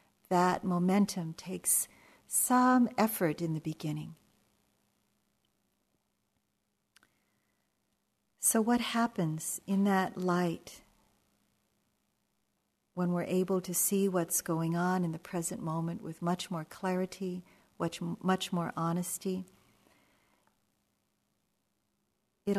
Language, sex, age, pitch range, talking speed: English, female, 50-69, 175-200 Hz, 90 wpm